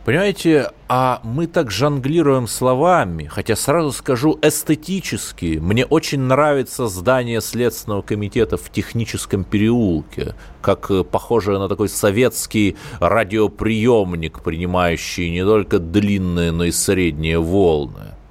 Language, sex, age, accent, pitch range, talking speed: Russian, male, 30-49, native, 85-125 Hz, 110 wpm